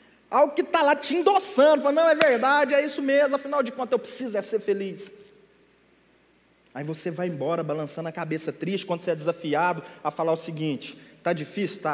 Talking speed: 190 wpm